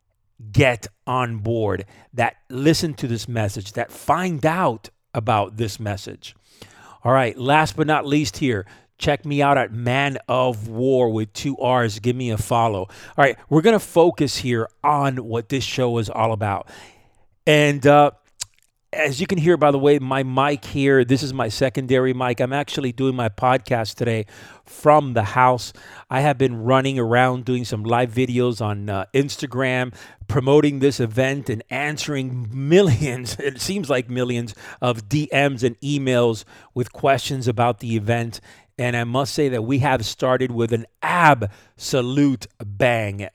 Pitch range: 115-140 Hz